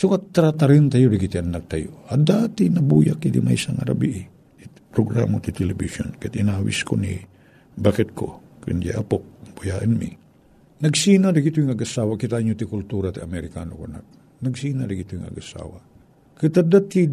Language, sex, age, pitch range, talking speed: Filipino, male, 50-69, 125-170 Hz, 155 wpm